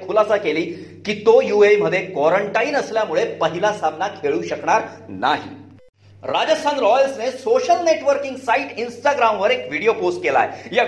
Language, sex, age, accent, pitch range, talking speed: Marathi, male, 40-59, native, 195-275 Hz, 120 wpm